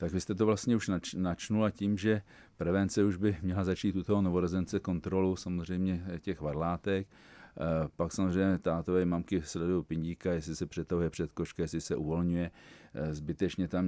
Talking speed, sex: 155 wpm, male